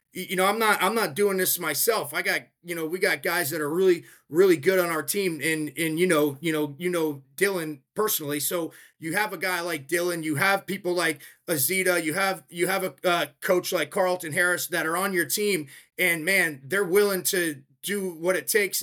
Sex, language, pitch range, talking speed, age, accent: male, English, 160-200 Hz, 225 wpm, 30-49, American